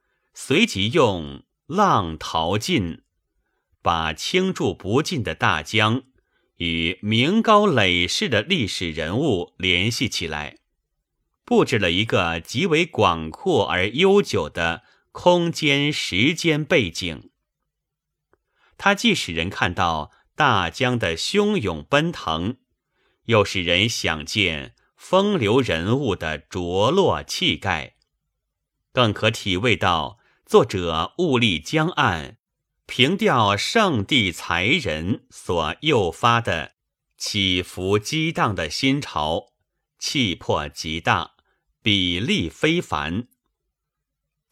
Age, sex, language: 30-49, male, Chinese